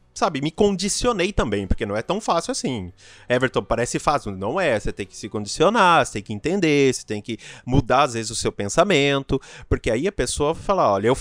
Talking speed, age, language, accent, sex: 215 wpm, 30-49, Portuguese, Brazilian, male